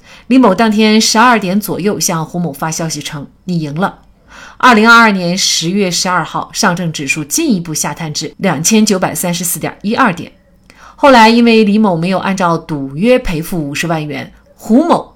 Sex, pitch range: female, 160-225 Hz